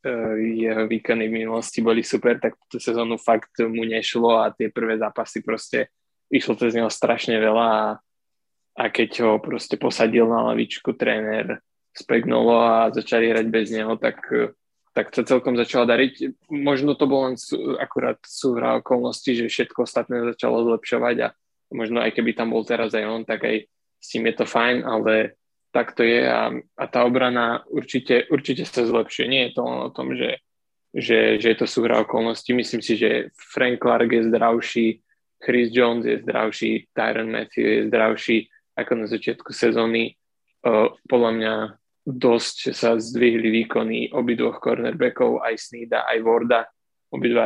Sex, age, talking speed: male, 20-39, 165 wpm